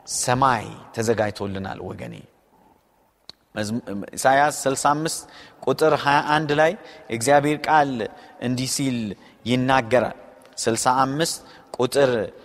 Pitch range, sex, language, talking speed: 130-215 Hz, male, Amharic, 65 wpm